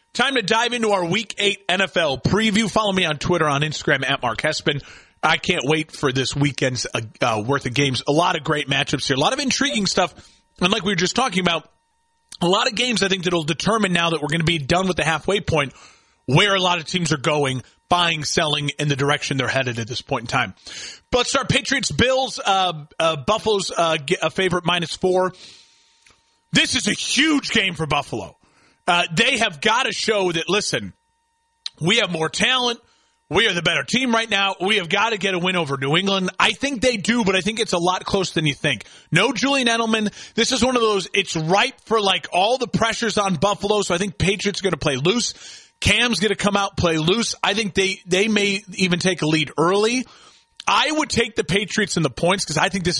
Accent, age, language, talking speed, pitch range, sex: American, 30-49, English, 230 wpm, 155-215 Hz, male